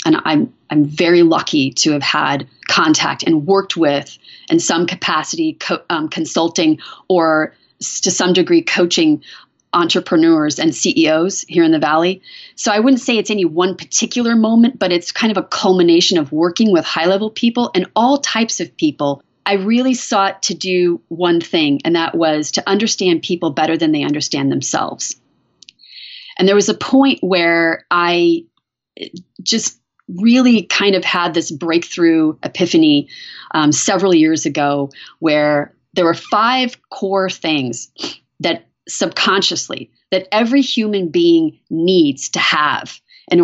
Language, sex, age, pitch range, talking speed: English, female, 30-49, 165-235 Hz, 150 wpm